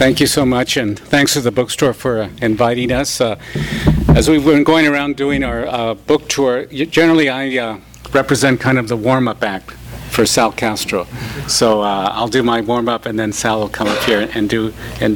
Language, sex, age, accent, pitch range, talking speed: English, male, 50-69, American, 110-140 Hz, 220 wpm